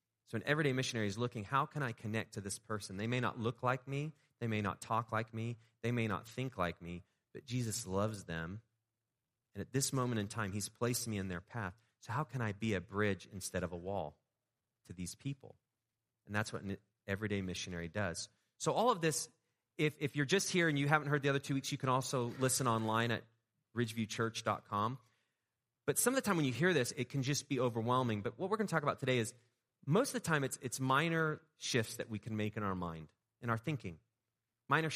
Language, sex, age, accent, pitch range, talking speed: English, male, 30-49, American, 110-140 Hz, 230 wpm